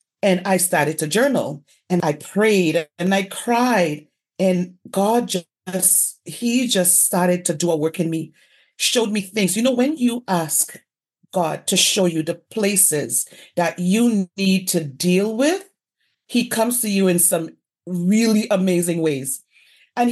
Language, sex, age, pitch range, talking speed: English, female, 40-59, 170-215 Hz, 160 wpm